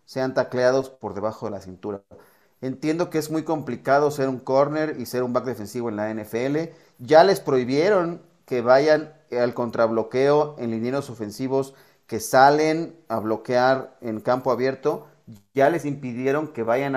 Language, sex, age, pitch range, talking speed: Spanish, male, 40-59, 120-155 Hz, 160 wpm